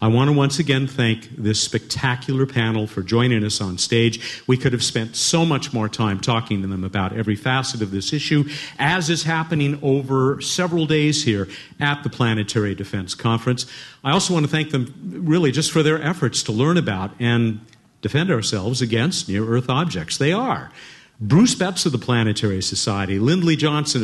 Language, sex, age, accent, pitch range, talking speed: English, male, 50-69, American, 115-165 Hz, 180 wpm